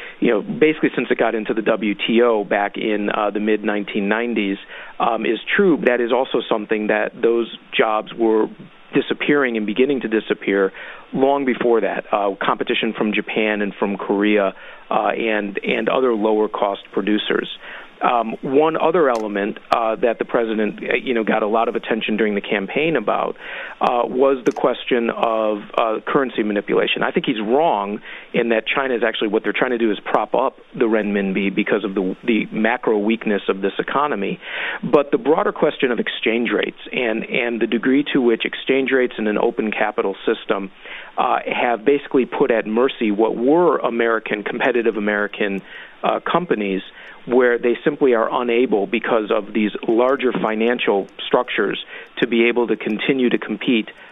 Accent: American